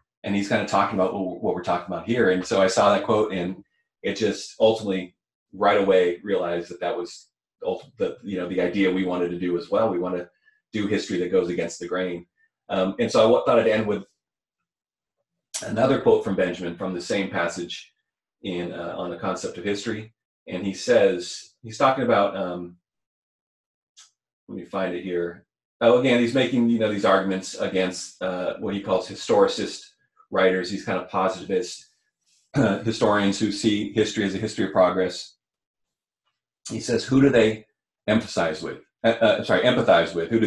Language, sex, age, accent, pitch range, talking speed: English, male, 30-49, American, 95-115 Hz, 185 wpm